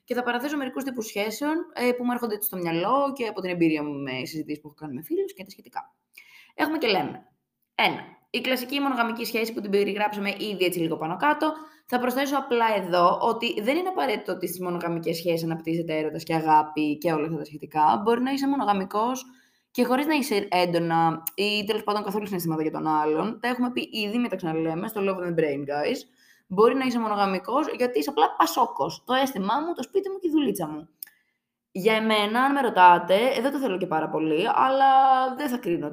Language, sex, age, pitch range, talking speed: Greek, female, 20-39, 170-260 Hz, 205 wpm